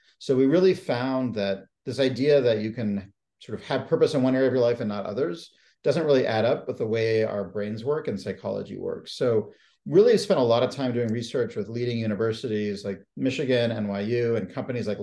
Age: 40-59